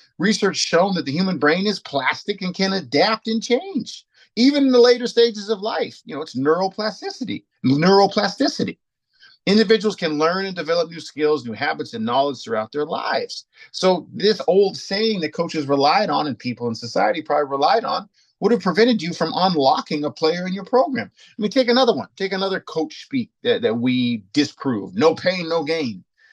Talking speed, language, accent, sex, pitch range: 190 wpm, English, American, male, 150-225 Hz